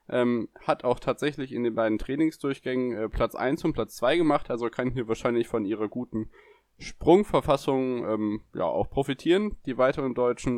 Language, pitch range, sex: German, 110-135 Hz, male